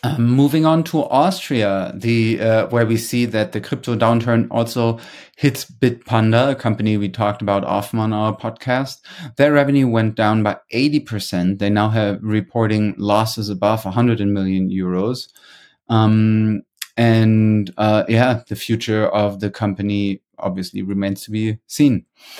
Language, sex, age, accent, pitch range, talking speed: English, male, 30-49, German, 105-125 Hz, 145 wpm